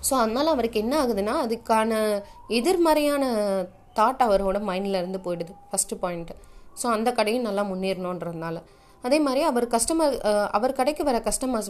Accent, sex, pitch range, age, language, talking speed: native, female, 195-255 Hz, 20-39, Tamil, 140 wpm